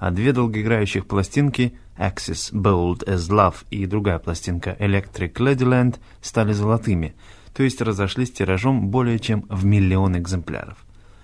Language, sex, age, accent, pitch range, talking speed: Russian, male, 20-39, native, 95-120 Hz, 130 wpm